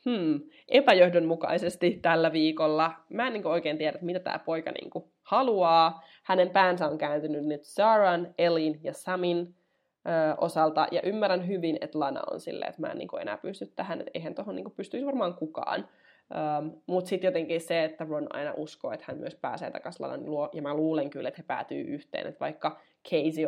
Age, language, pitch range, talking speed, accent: 20-39, Finnish, 155-190 Hz, 180 wpm, native